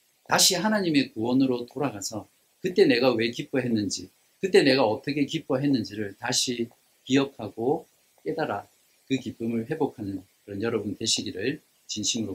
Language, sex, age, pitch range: Korean, male, 50-69, 110-140 Hz